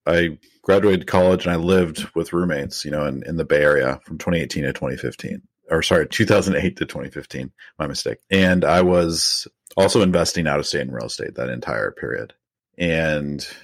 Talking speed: 180 wpm